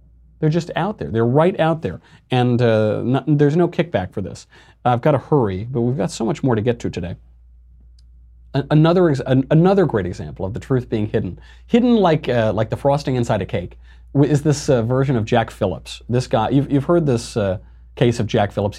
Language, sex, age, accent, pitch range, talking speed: English, male, 30-49, American, 95-130 Hz, 225 wpm